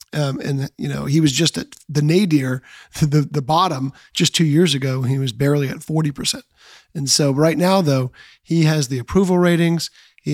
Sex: male